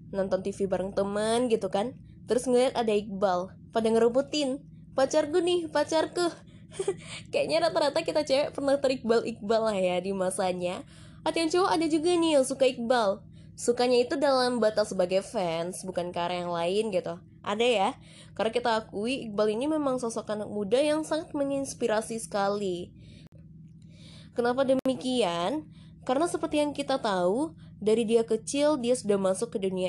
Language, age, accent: Indonesian, 20-39, native